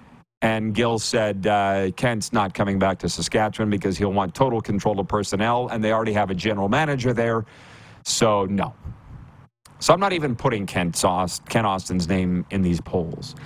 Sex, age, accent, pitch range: male, 40-59, American, 100-125 Hz